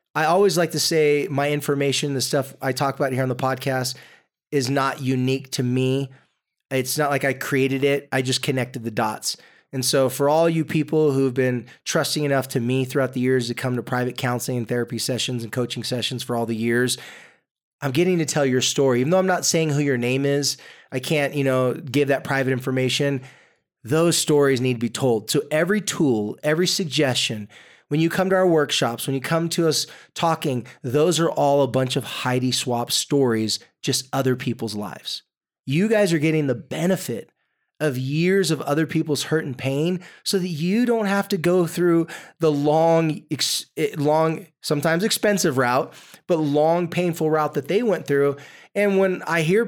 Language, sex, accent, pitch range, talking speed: English, male, American, 130-170 Hz, 195 wpm